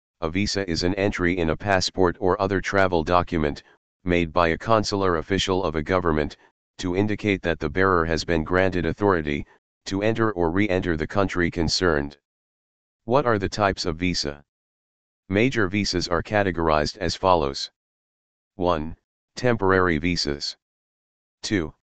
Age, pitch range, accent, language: 40-59, 80-100 Hz, American, English